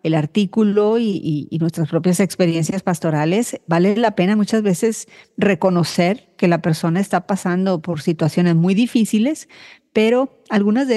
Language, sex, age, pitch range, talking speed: Spanish, female, 40-59, 175-215 Hz, 150 wpm